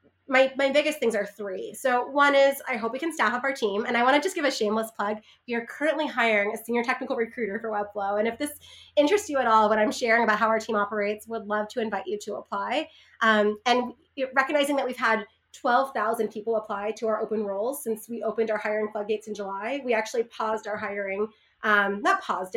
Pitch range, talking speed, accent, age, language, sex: 210-255 Hz, 230 wpm, American, 30-49, English, female